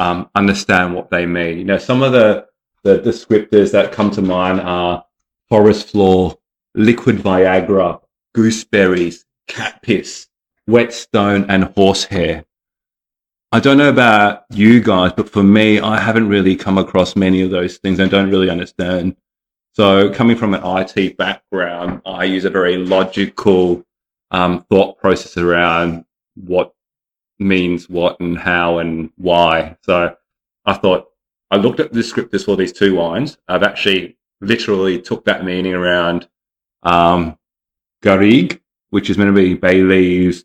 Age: 30-49